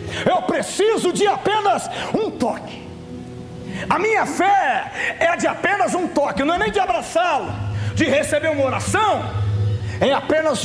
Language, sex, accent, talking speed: Portuguese, male, Brazilian, 140 wpm